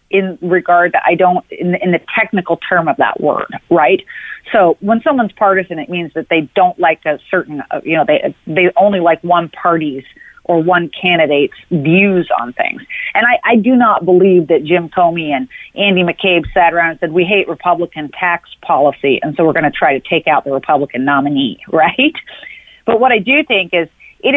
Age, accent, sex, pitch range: 40-59, American, female, 165-200 Hz